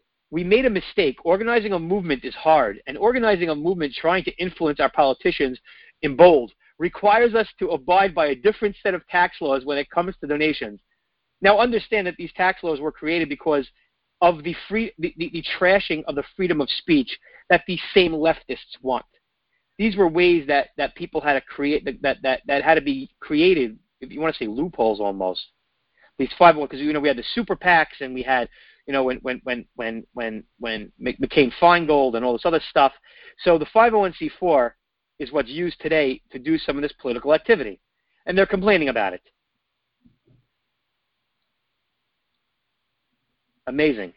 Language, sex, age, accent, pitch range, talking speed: English, male, 40-59, American, 135-185 Hz, 175 wpm